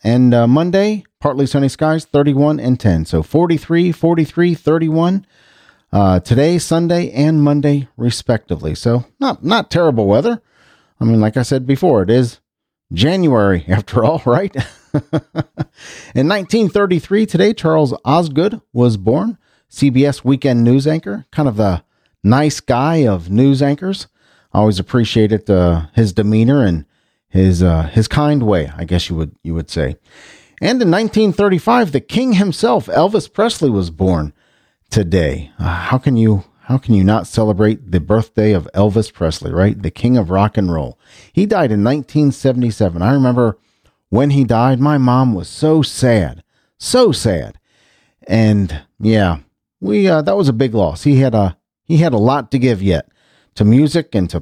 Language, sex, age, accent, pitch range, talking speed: English, male, 40-59, American, 100-155 Hz, 160 wpm